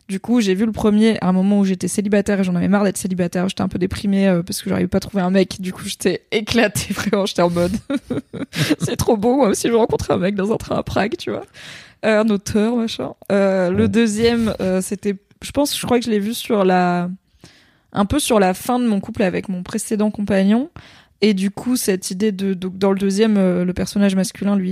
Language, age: French, 20-39